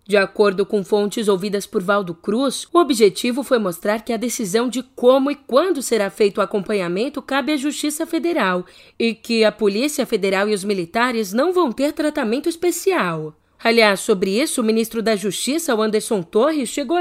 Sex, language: female, Portuguese